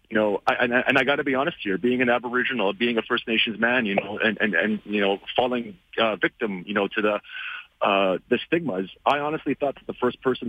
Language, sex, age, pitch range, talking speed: English, male, 30-49, 100-120 Hz, 245 wpm